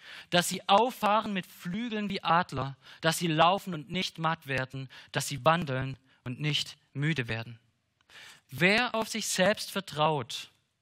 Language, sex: German, male